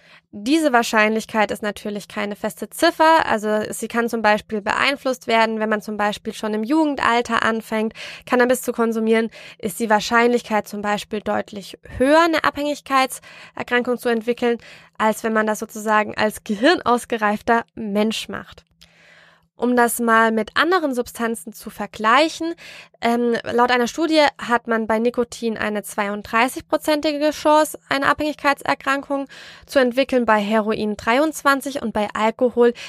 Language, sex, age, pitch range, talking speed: German, female, 20-39, 220-270 Hz, 135 wpm